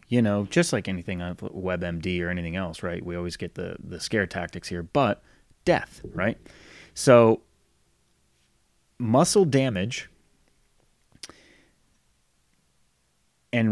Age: 30-49